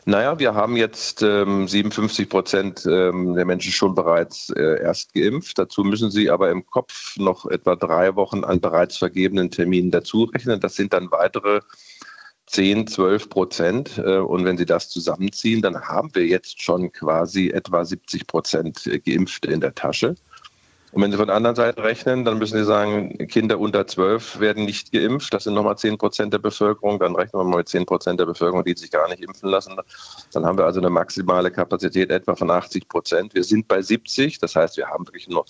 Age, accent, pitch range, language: 40-59, German, 90-110 Hz, German